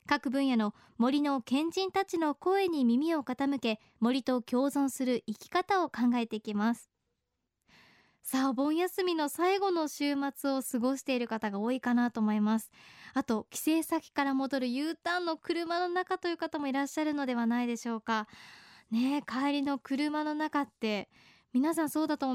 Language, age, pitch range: Japanese, 20-39, 235-310 Hz